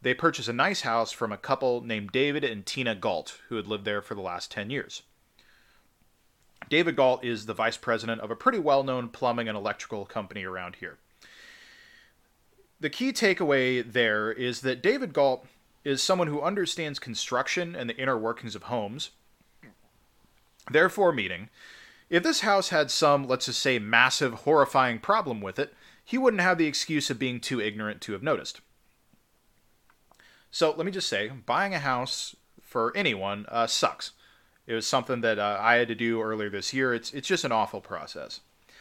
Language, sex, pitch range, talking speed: English, male, 110-145 Hz, 175 wpm